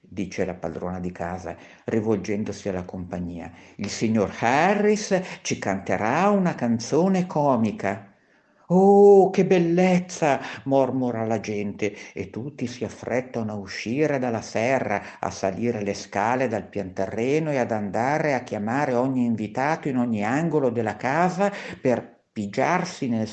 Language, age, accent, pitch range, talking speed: Italian, 50-69, native, 100-135 Hz, 130 wpm